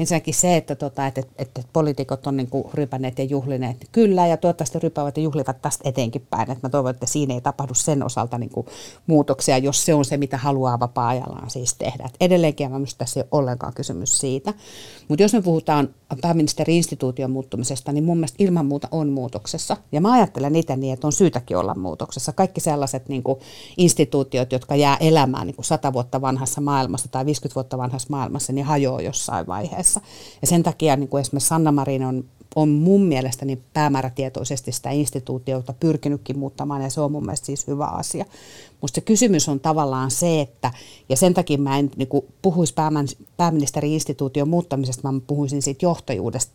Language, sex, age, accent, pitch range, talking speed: Finnish, female, 50-69, native, 130-155 Hz, 185 wpm